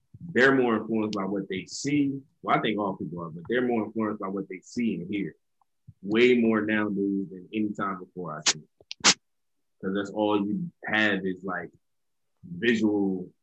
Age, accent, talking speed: 20-39, American, 180 wpm